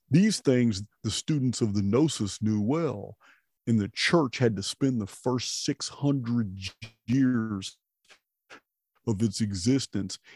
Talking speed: 125 wpm